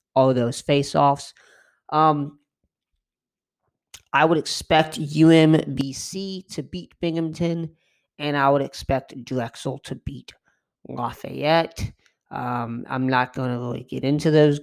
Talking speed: 110 wpm